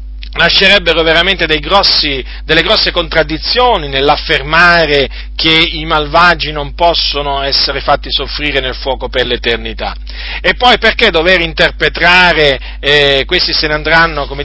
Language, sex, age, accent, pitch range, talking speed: Italian, male, 40-59, native, 130-165 Hz, 130 wpm